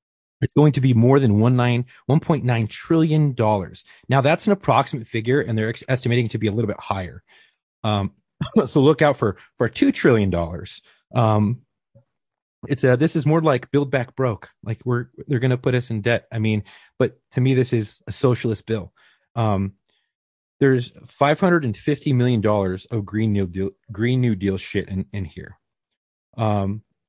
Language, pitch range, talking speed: English, 110-135 Hz, 175 wpm